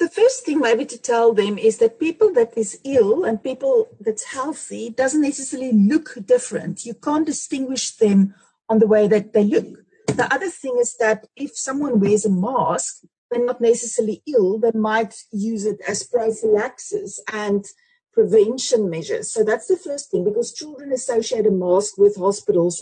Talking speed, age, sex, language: 175 wpm, 40-59, female, English